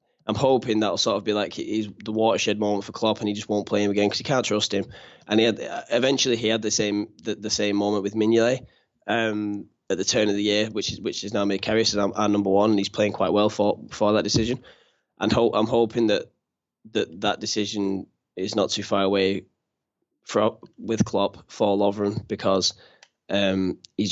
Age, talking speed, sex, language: 10-29, 220 wpm, male, English